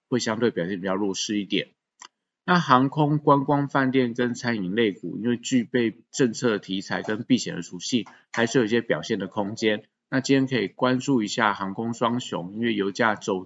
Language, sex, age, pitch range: Chinese, male, 20-39, 95-120 Hz